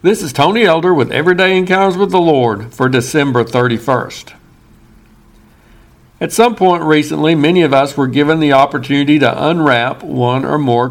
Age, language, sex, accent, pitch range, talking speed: 60-79, English, male, American, 135-165 Hz, 160 wpm